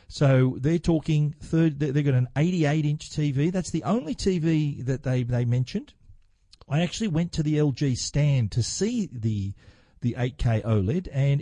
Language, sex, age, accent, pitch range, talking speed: English, male, 40-59, Australian, 115-150 Hz, 170 wpm